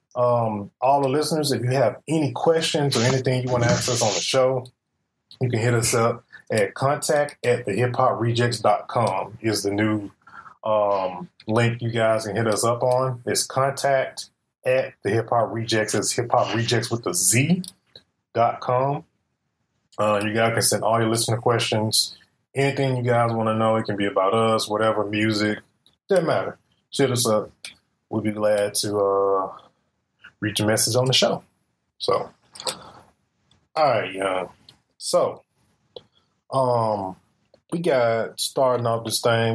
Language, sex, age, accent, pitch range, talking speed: English, male, 20-39, American, 105-125 Hz, 165 wpm